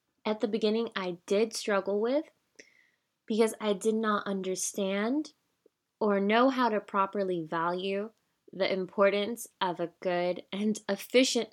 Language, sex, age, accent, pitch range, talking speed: English, female, 20-39, American, 190-235 Hz, 130 wpm